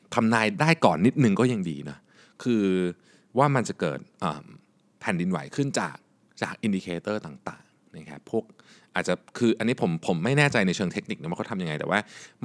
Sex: male